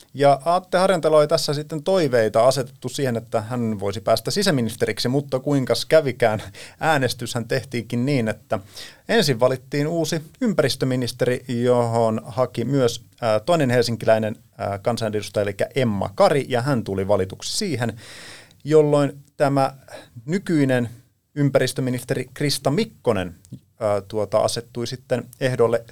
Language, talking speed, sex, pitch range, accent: Finnish, 115 wpm, male, 110-140 Hz, native